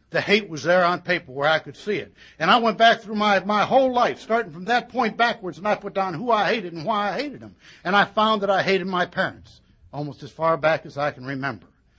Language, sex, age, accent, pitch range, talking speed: English, male, 60-79, American, 145-205 Hz, 265 wpm